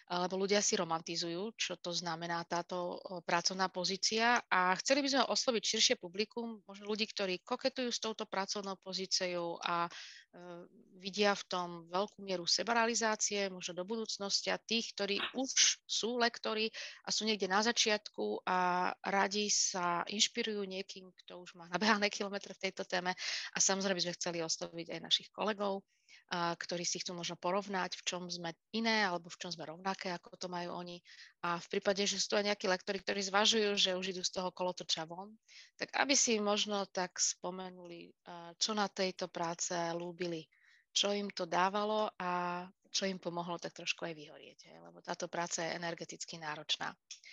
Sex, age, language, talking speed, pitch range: female, 30-49, Slovak, 170 wpm, 175-210 Hz